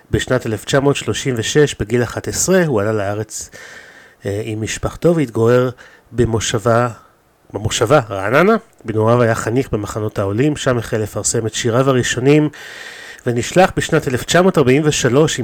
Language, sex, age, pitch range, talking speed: Hebrew, male, 30-49, 110-135 Hz, 110 wpm